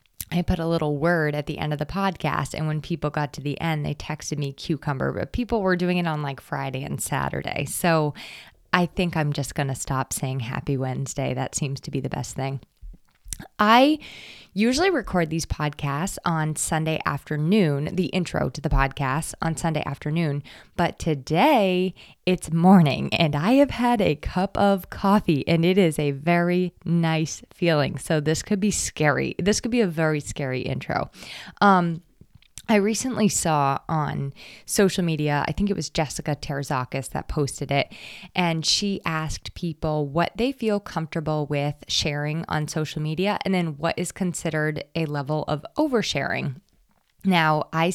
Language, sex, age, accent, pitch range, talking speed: English, female, 20-39, American, 150-185 Hz, 170 wpm